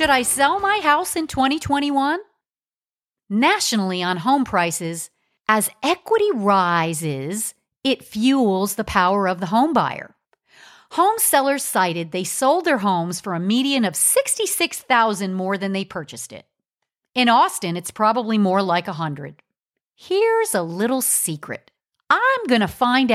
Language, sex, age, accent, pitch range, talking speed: English, female, 50-69, American, 180-270 Hz, 140 wpm